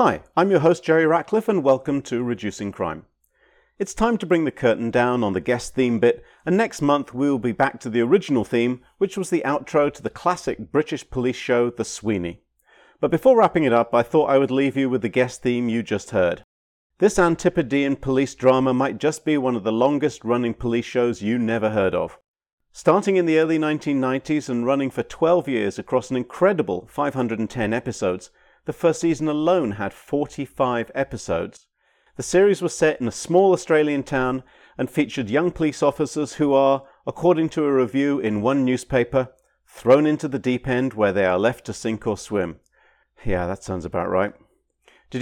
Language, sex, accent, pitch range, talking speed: English, male, British, 115-155 Hz, 190 wpm